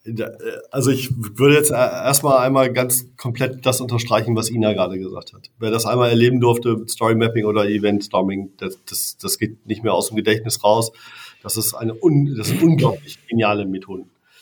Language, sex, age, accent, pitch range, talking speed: German, male, 40-59, German, 110-130 Hz, 180 wpm